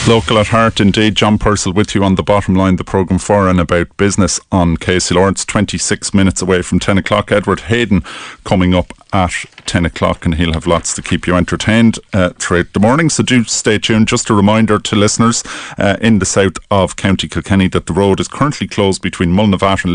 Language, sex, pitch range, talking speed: English, male, 85-105 Hz, 215 wpm